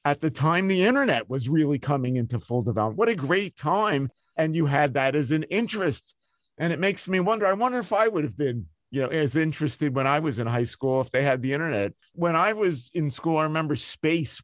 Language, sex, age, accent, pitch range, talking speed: English, male, 50-69, American, 135-175 Hz, 235 wpm